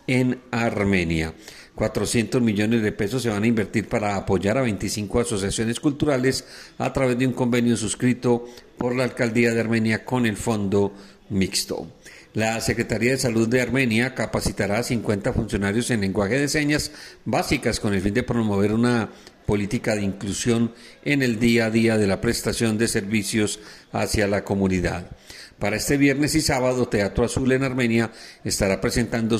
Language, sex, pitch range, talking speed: Spanish, male, 105-125 Hz, 160 wpm